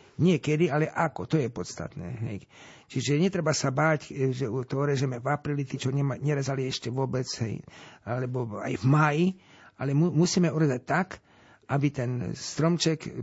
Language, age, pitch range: Slovak, 50-69, 135-160 Hz